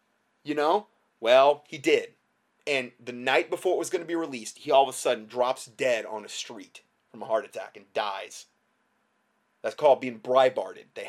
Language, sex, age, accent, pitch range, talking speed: English, male, 30-49, American, 120-150 Hz, 195 wpm